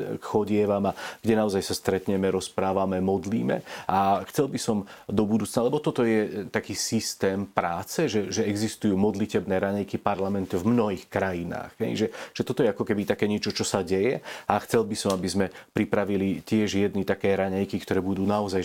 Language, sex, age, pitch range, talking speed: Slovak, male, 40-59, 95-105 Hz, 175 wpm